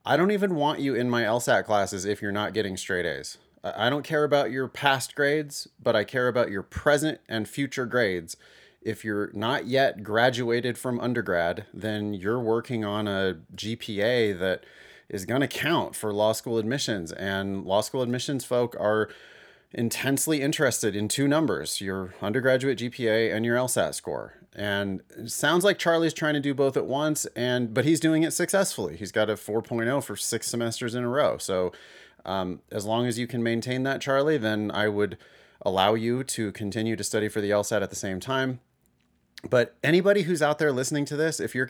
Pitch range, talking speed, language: 105-135 Hz, 195 wpm, English